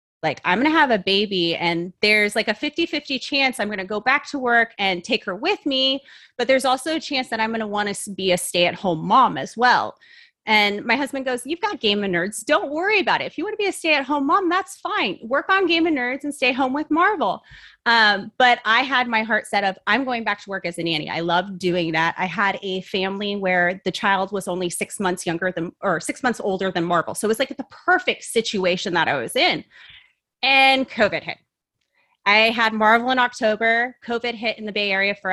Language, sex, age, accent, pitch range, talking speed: English, female, 30-49, American, 195-255 Hz, 240 wpm